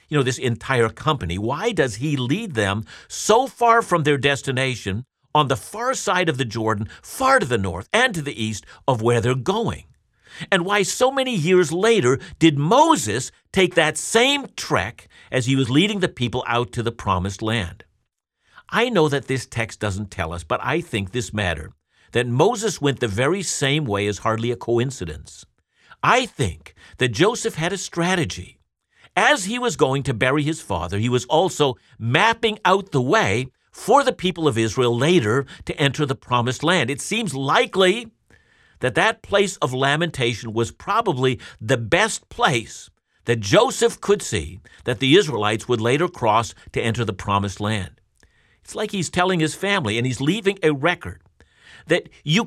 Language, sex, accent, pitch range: English, male, American, 115-180 Hz